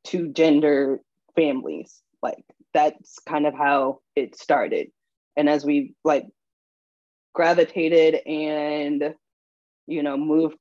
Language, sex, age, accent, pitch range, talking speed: English, female, 20-39, American, 145-160 Hz, 105 wpm